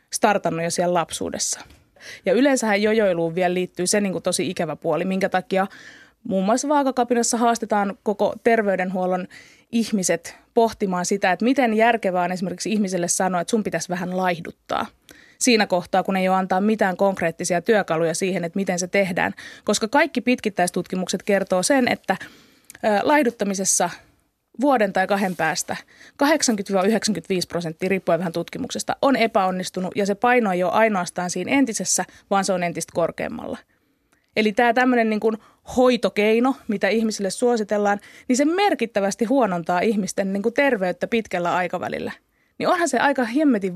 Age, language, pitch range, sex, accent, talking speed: 20-39, Finnish, 185-235 Hz, female, native, 145 wpm